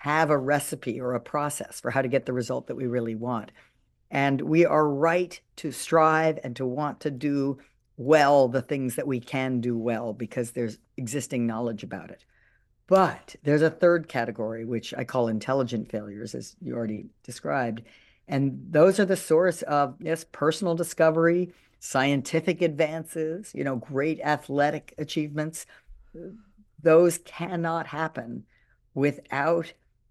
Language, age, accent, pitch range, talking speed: English, 50-69, American, 125-160 Hz, 150 wpm